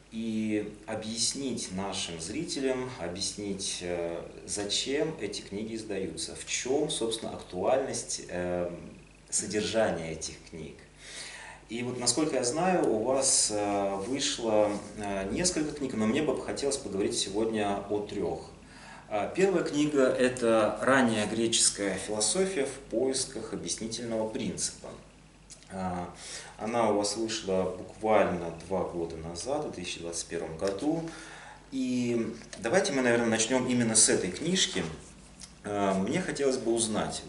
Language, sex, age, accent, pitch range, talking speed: Russian, male, 30-49, native, 95-125 Hz, 110 wpm